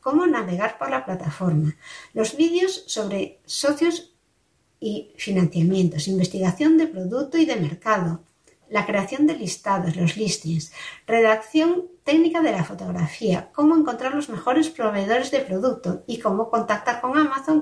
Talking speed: 135 wpm